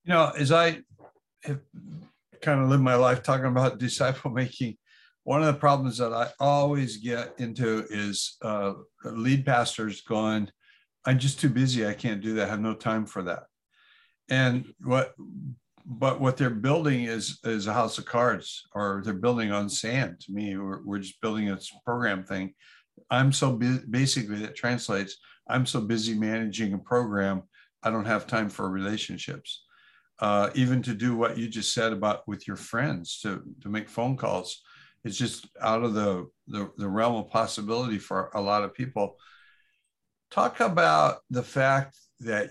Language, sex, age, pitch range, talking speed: English, male, 60-79, 105-130 Hz, 175 wpm